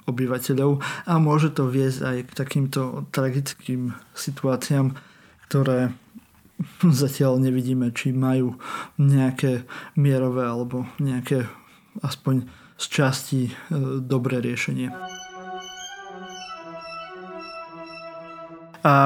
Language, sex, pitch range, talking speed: Slovak, male, 135-160 Hz, 80 wpm